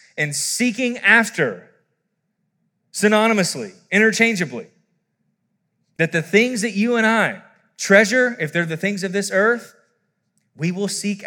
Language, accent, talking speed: English, American, 120 wpm